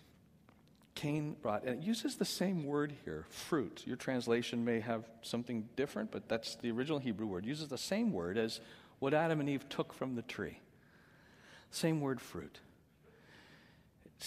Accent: American